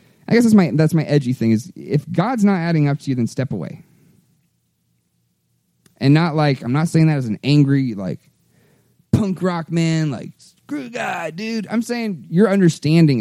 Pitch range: 115-170 Hz